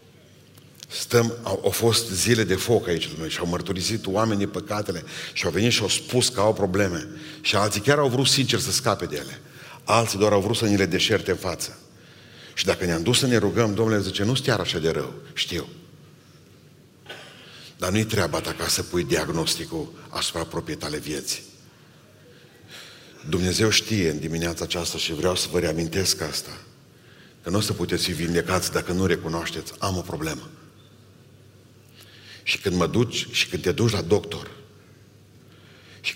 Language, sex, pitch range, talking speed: Romanian, male, 90-115 Hz, 170 wpm